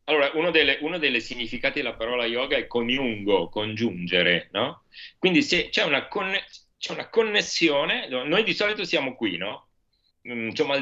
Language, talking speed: Italian, 150 wpm